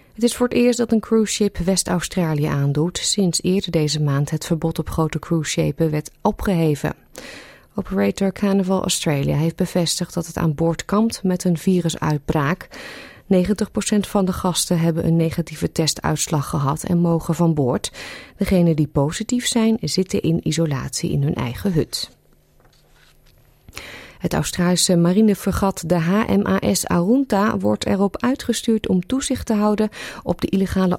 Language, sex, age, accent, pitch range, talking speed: Dutch, female, 30-49, Dutch, 160-200 Hz, 145 wpm